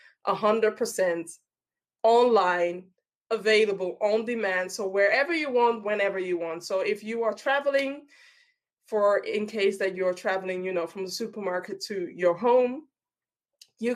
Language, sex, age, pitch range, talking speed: English, female, 20-39, 180-225 Hz, 145 wpm